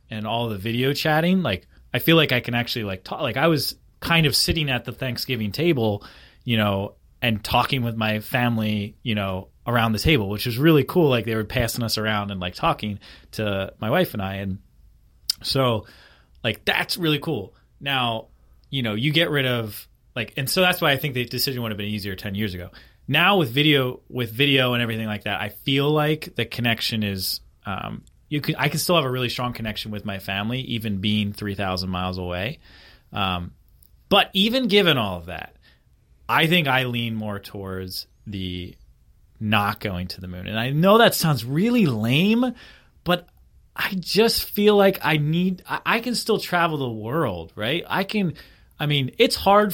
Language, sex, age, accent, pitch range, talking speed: English, male, 30-49, American, 105-155 Hz, 200 wpm